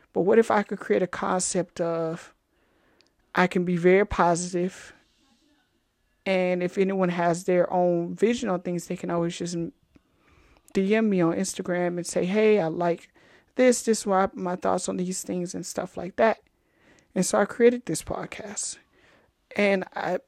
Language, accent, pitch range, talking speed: English, American, 175-195 Hz, 165 wpm